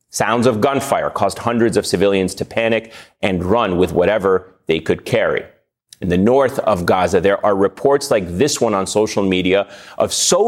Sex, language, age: male, English, 30-49